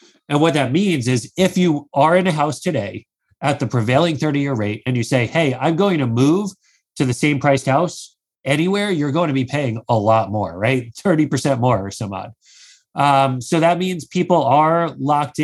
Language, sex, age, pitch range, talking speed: English, male, 30-49, 120-150 Hz, 200 wpm